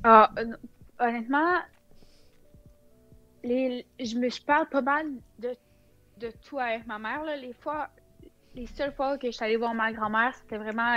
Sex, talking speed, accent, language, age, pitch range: female, 165 wpm, Canadian, French, 20-39, 220-265 Hz